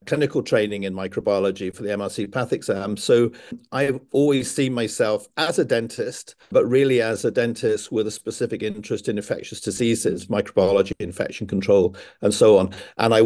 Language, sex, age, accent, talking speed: English, male, 50-69, British, 165 wpm